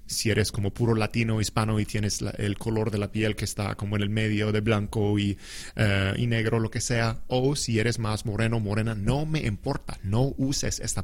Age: 30-49